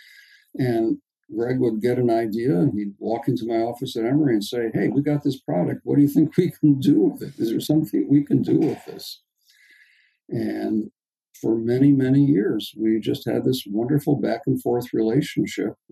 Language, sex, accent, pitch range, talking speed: English, male, American, 105-140 Hz, 190 wpm